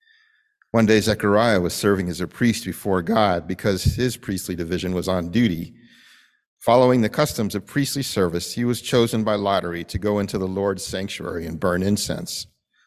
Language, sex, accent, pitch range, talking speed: English, male, American, 90-120 Hz, 175 wpm